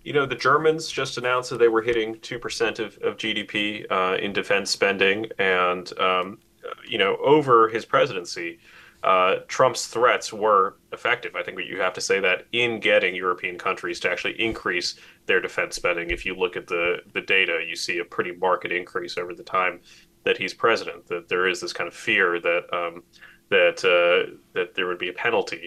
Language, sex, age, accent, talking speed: English, male, 30-49, American, 195 wpm